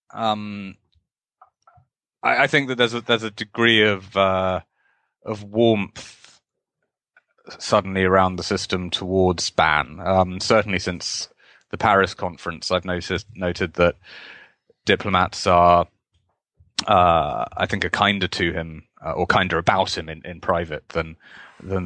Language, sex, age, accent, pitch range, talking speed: English, male, 30-49, British, 90-105 Hz, 135 wpm